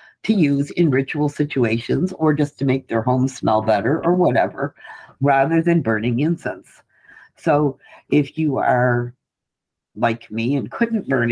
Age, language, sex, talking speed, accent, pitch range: 60-79, English, female, 150 wpm, American, 120-155 Hz